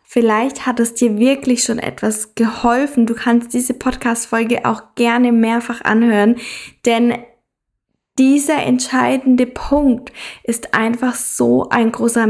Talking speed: 120 wpm